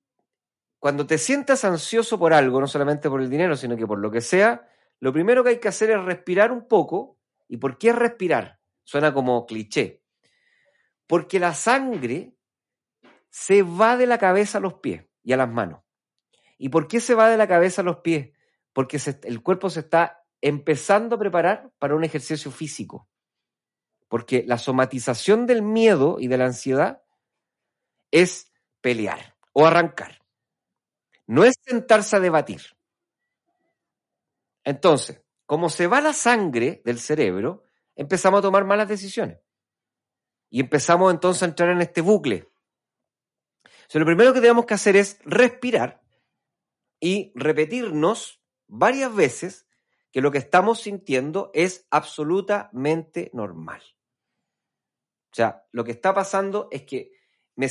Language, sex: Spanish, male